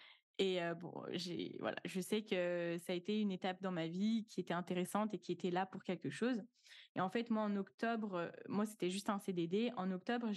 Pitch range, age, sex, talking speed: 185-220 Hz, 20-39, female, 230 wpm